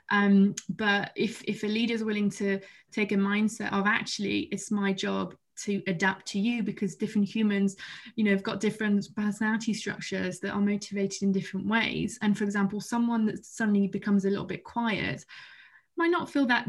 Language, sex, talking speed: English, female, 185 wpm